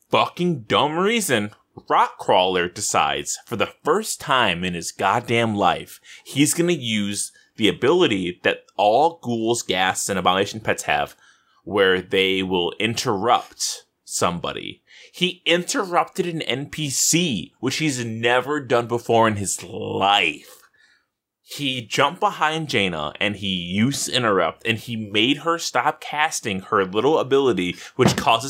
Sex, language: male, English